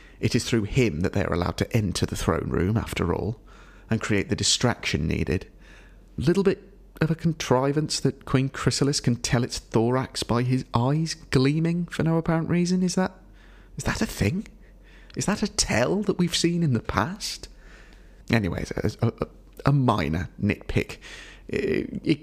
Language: English